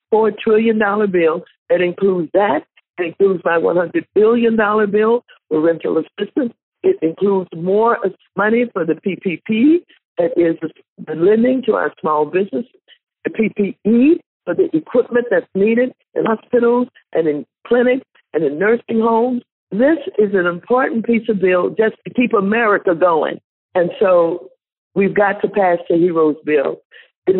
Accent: American